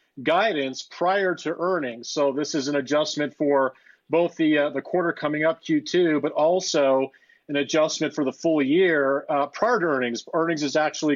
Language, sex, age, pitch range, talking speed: English, male, 40-59, 140-170 Hz, 175 wpm